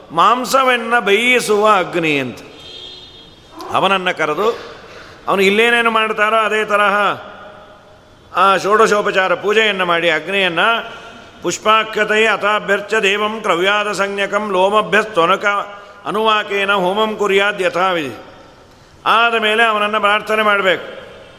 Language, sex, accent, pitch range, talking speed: Kannada, male, native, 175-220 Hz, 85 wpm